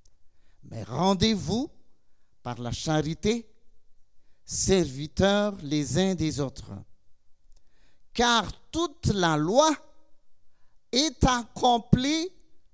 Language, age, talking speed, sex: French, 50-69, 75 wpm, male